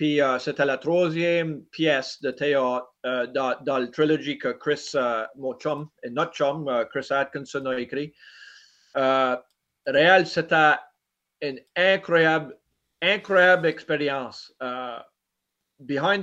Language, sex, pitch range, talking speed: French, male, 135-165 Hz, 120 wpm